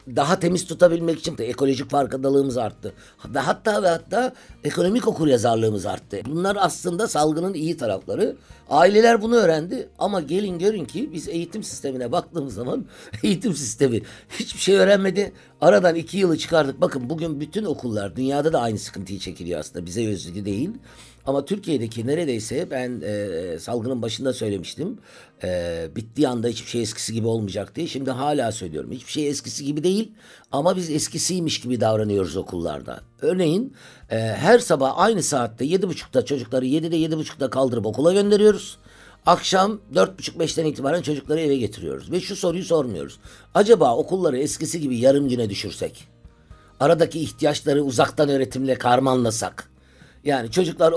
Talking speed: 150 wpm